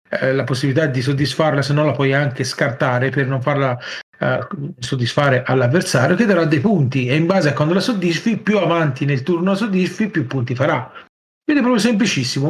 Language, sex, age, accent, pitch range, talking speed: Italian, male, 40-59, native, 140-190 Hz, 185 wpm